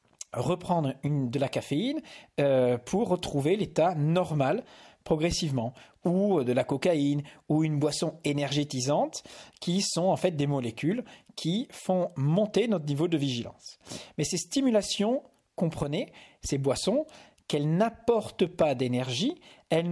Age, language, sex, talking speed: 40-59, English, male, 130 wpm